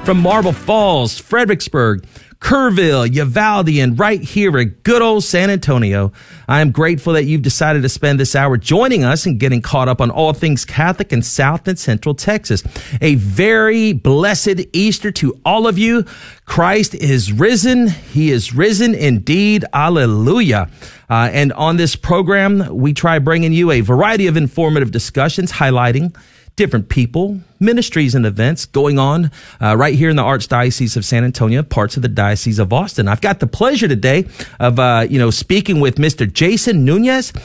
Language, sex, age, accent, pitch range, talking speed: English, male, 40-59, American, 125-195 Hz, 170 wpm